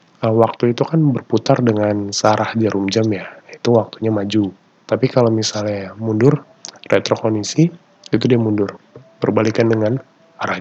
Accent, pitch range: native, 110-140 Hz